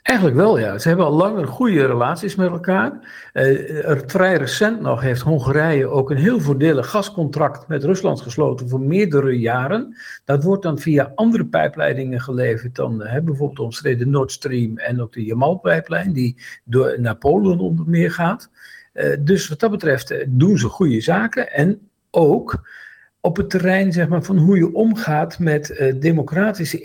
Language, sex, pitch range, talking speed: Dutch, male, 135-185 Hz, 170 wpm